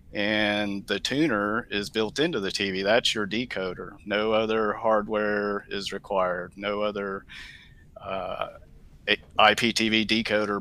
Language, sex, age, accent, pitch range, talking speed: English, male, 40-59, American, 100-110 Hz, 120 wpm